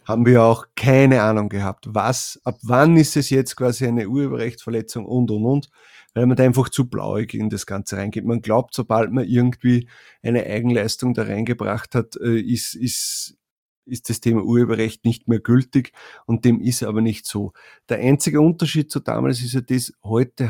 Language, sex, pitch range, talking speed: German, male, 110-125 Hz, 180 wpm